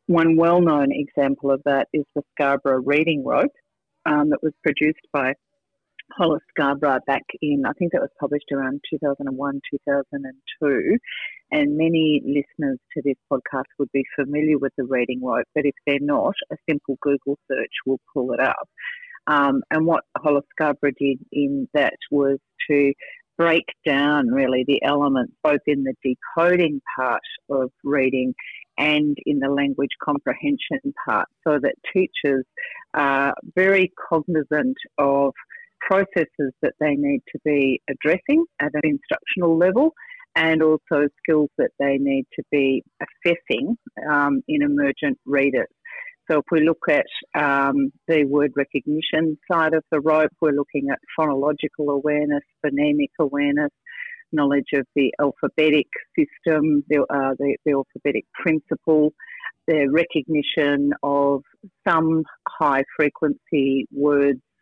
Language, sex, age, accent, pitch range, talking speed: English, female, 40-59, Australian, 140-180 Hz, 135 wpm